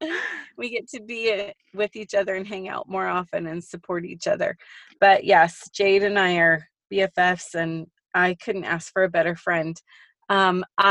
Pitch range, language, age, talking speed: 180-210 Hz, English, 30-49, 175 wpm